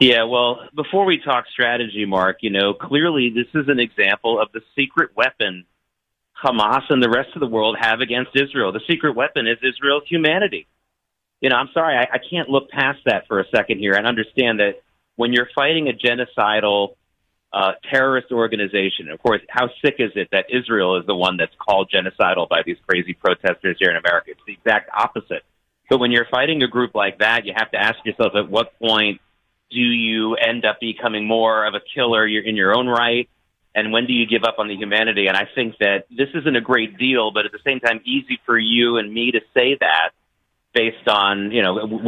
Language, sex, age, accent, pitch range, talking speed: English, male, 40-59, American, 105-130 Hz, 210 wpm